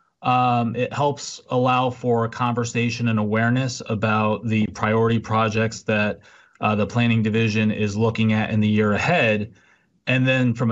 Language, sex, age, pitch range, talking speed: English, male, 30-49, 110-120 Hz, 155 wpm